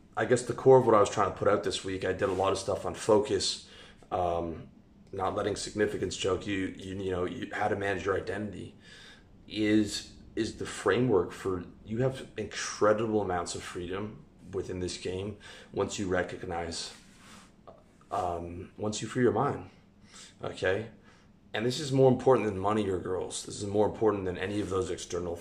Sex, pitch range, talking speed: male, 90-105 Hz, 185 wpm